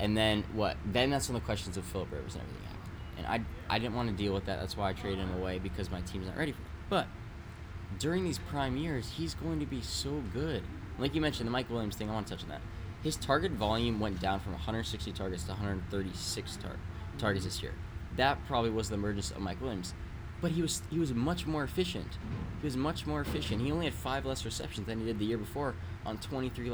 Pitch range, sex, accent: 95-115 Hz, male, American